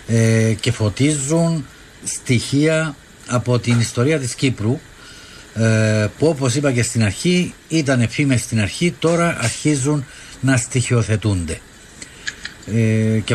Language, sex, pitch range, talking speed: Greek, male, 110-135 Hz, 105 wpm